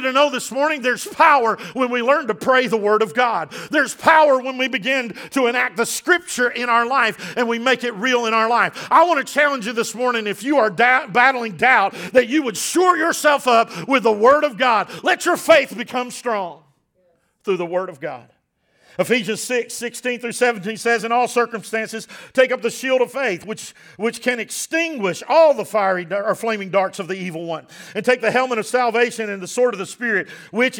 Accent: American